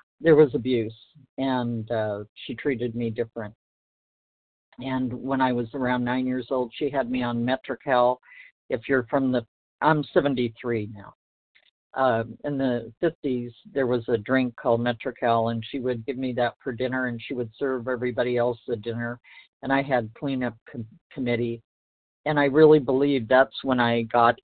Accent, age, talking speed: American, 50-69, 165 wpm